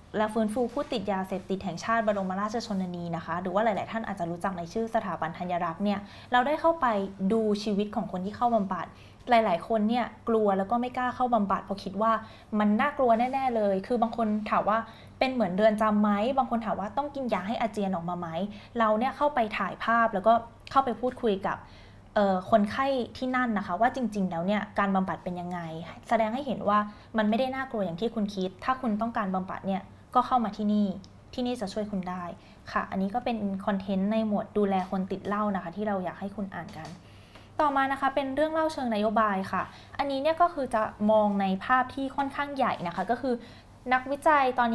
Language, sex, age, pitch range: Thai, female, 20-39, 195-235 Hz